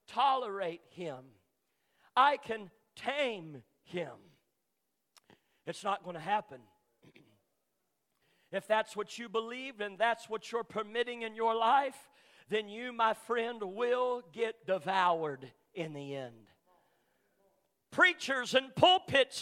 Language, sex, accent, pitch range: English, male, American, 230-335 Hz